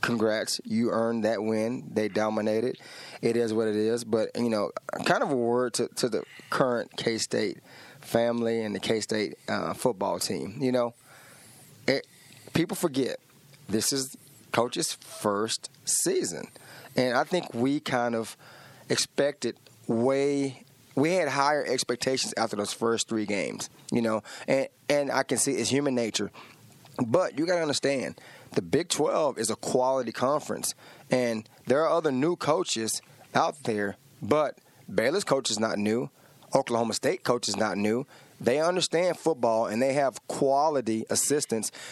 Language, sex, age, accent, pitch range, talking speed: English, male, 20-39, American, 115-140 Hz, 155 wpm